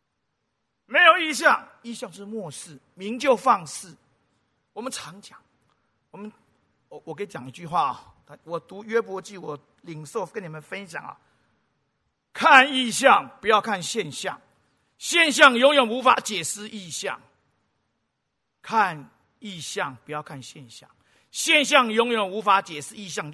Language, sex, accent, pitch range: Chinese, male, native, 195-275 Hz